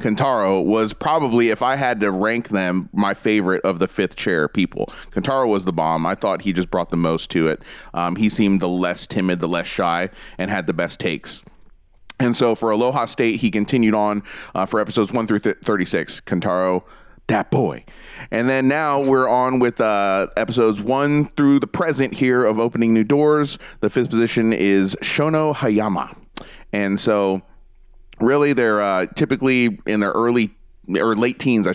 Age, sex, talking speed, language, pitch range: 30-49, male, 185 wpm, English, 95-115 Hz